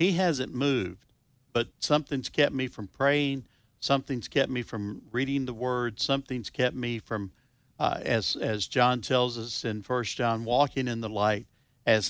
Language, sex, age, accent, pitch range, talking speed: English, male, 50-69, American, 110-140 Hz, 170 wpm